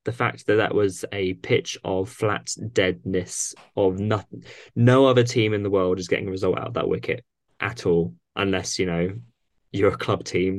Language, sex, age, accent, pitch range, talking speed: English, male, 20-39, British, 90-105 Hz, 200 wpm